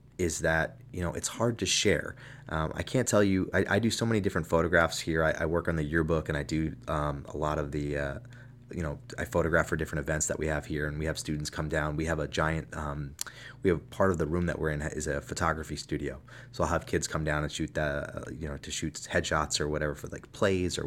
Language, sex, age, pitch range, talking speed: English, male, 20-39, 75-100 Hz, 260 wpm